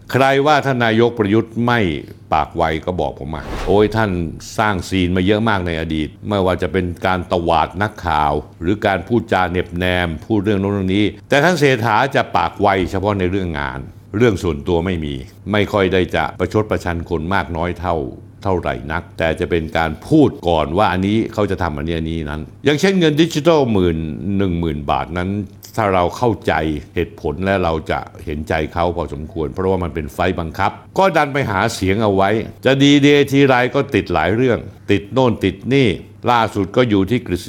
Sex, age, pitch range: male, 60-79, 85-110 Hz